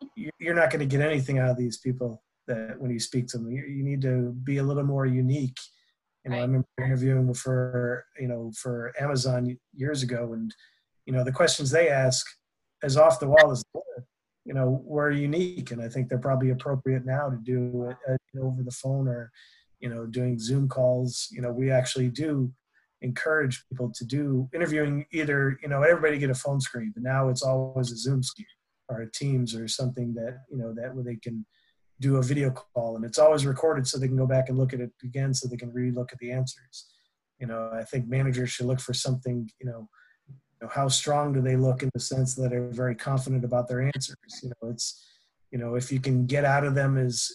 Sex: male